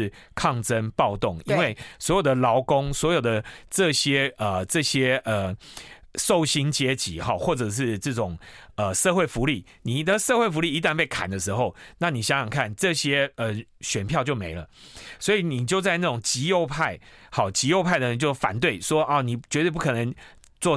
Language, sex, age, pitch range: Chinese, male, 30-49, 110-155 Hz